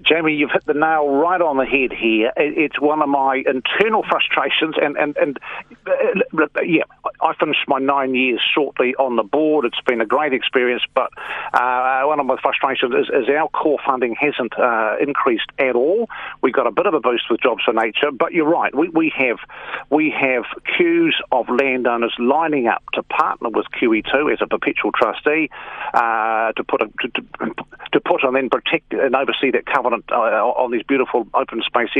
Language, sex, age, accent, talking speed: English, male, 50-69, British, 190 wpm